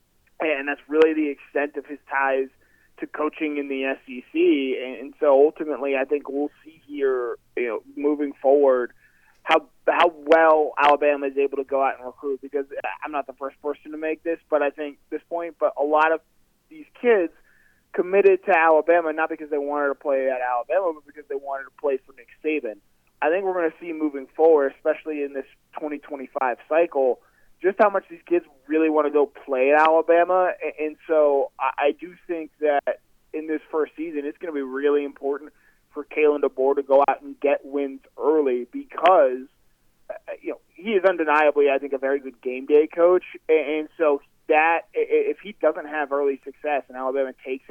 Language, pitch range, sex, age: English, 140-165 Hz, male, 20-39